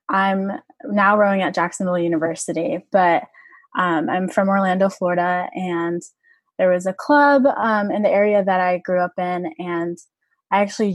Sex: female